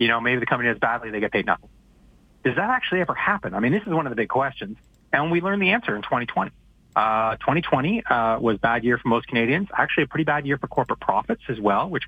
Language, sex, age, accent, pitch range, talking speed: English, male, 30-49, American, 115-150 Hz, 265 wpm